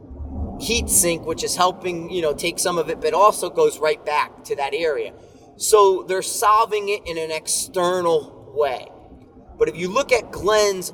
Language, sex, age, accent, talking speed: English, male, 30-49, American, 180 wpm